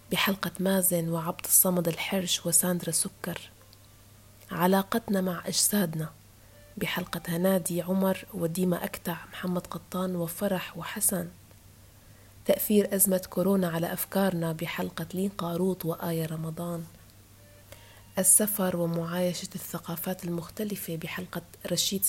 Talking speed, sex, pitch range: 95 wpm, female, 165-185 Hz